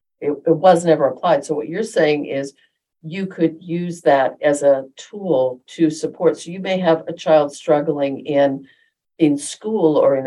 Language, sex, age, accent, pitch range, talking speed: English, female, 50-69, American, 145-165 Hz, 180 wpm